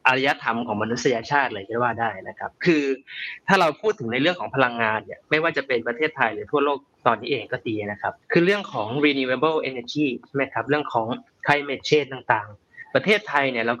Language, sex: Thai, male